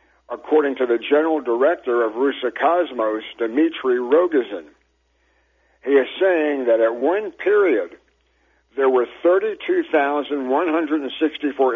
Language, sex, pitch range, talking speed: English, male, 125-200 Hz, 100 wpm